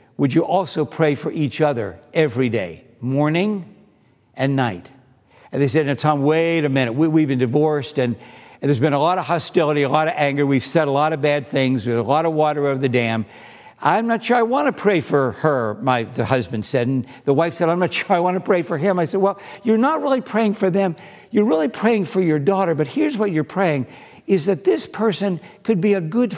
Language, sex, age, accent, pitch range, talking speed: English, male, 60-79, American, 145-210 Hz, 240 wpm